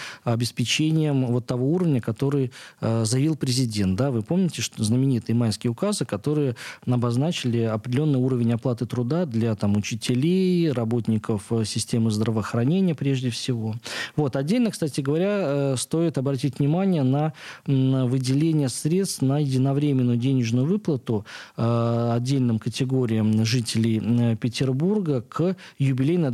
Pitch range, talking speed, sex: 120-145 Hz, 105 wpm, male